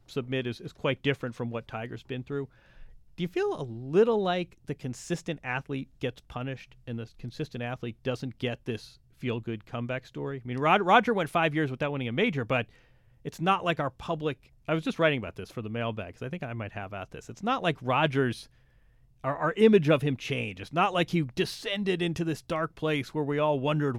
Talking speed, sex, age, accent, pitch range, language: 220 wpm, male, 30-49, American, 125-155 Hz, English